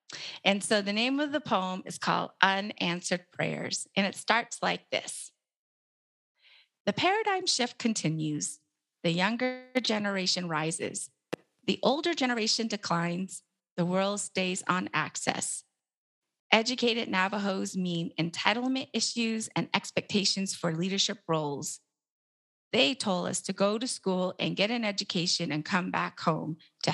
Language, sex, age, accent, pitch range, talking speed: English, female, 30-49, American, 170-215 Hz, 130 wpm